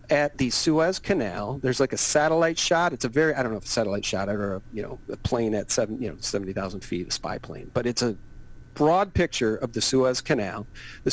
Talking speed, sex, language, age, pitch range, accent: 235 wpm, male, English, 40-59, 120-155 Hz, American